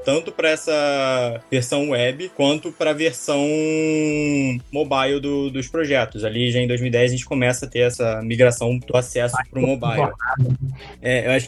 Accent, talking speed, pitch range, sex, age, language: Brazilian, 165 wpm, 125-150 Hz, male, 20-39, Portuguese